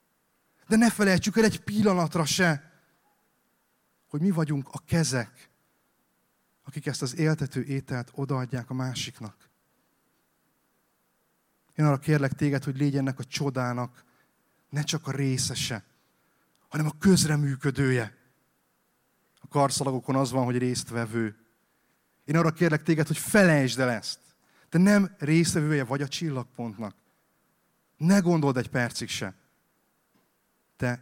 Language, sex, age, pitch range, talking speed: Hungarian, male, 30-49, 130-165 Hz, 120 wpm